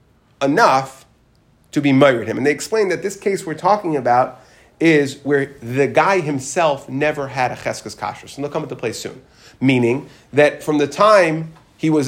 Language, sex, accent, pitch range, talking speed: English, male, American, 140-190 Hz, 185 wpm